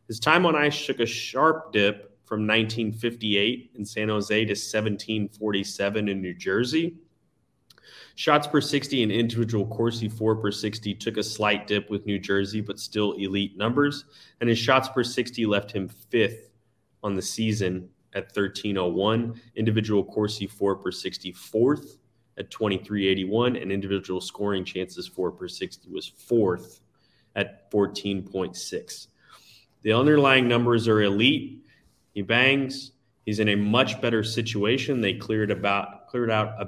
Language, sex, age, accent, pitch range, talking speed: English, male, 30-49, American, 100-125 Hz, 145 wpm